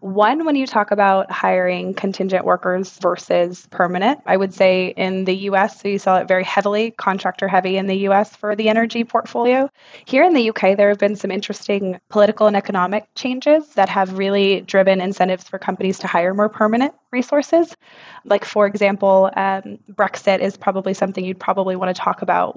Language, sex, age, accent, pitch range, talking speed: English, female, 20-39, American, 190-220 Hz, 185 wpm